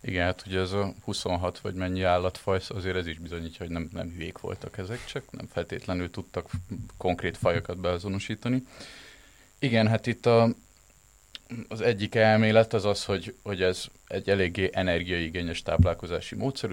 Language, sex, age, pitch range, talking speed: Hungarian, male, 30-49, 85-105 Hz, 155 wpm